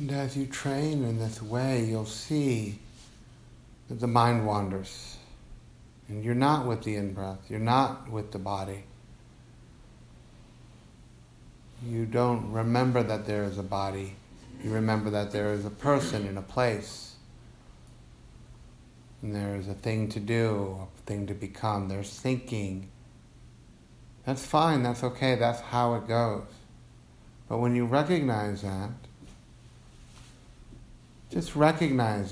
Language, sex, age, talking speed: English, male, 50-69, 130 wpm